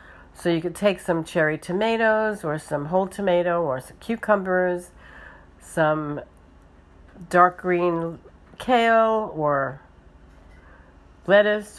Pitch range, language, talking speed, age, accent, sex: 135-180 Hz, English, 100 wpm, 60-79, American, female